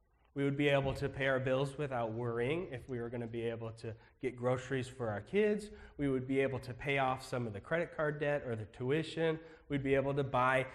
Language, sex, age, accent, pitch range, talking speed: English, male, 30-49, American, 125-160 Hz, 245 wpm